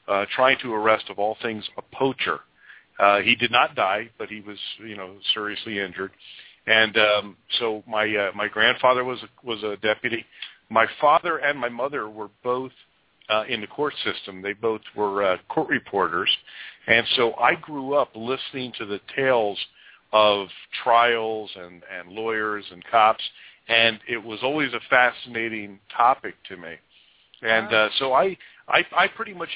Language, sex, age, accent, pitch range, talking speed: English, male, 50-69, American, 105-125 Hz, 170 wpm